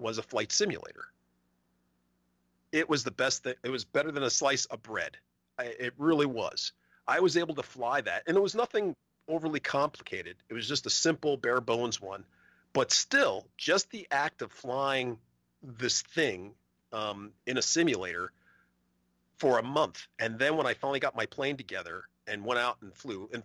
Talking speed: 180 wpm